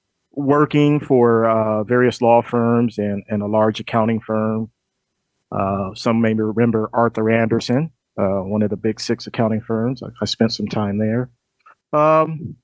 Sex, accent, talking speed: male, American, 155 wpm